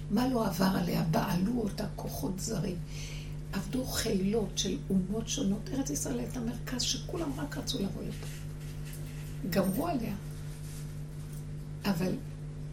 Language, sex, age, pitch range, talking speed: Hebrew, female, 60-79, 150-195 Hz, 120 wpm